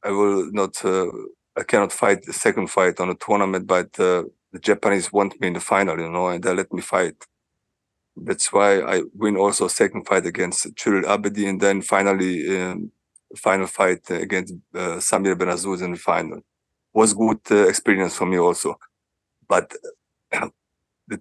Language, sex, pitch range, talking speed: English, male, 95-115 Hz, 175 wpm